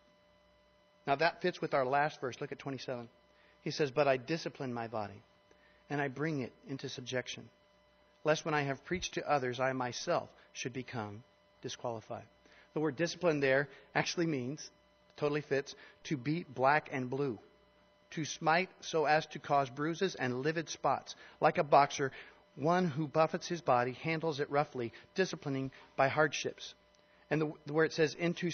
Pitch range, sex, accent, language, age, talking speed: 125-165 Hz, male, American, English, 40-59, 165 wpm